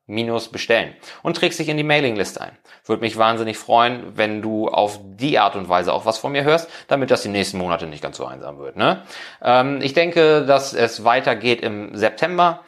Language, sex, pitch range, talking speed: German, male, 100-135 Hz, 210 wpm